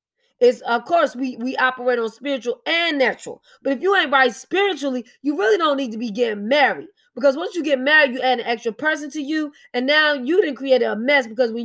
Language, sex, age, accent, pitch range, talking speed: English, female, 20-39, American, 245-320 Hz, 230 wpm